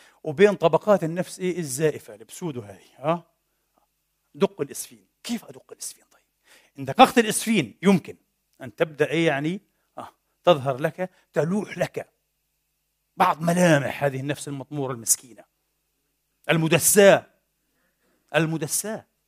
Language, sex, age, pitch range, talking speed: Arabic, male, 50-69, 150-200 Hz, 110 wpm